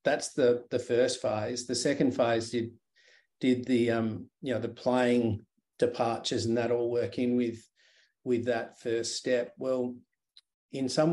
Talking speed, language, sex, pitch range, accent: 160 wpm, English, male, 115-125 Hz, Australian